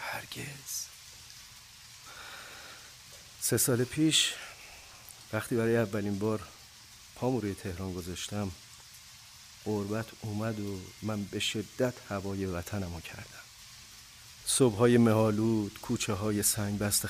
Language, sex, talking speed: Persian, male, 100 wpm